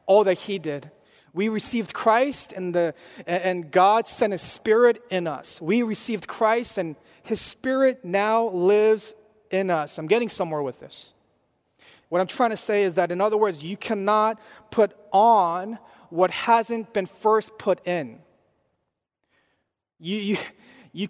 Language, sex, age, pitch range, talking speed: English, male, 30-49, 175-225 Hz, 150 wpm